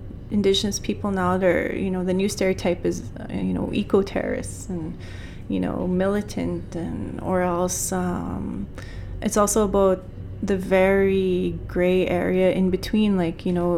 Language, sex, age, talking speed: English, female, 20-39, 140 wpm